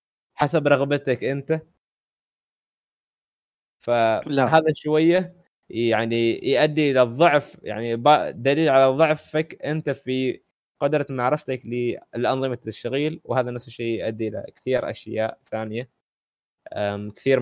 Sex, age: male, 20-39